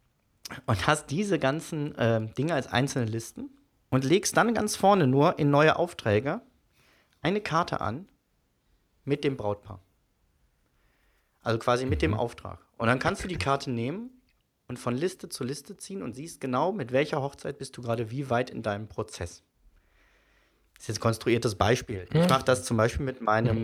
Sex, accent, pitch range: male, German, 110-150 Hz